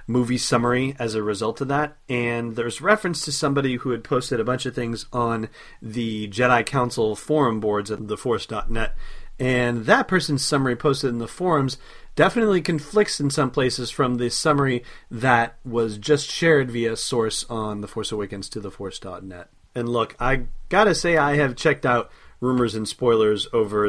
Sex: male